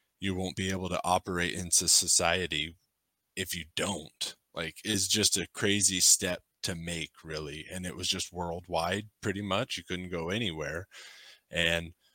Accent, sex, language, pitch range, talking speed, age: American, male, English, 85-100 Hz, 160 wpm, 20-39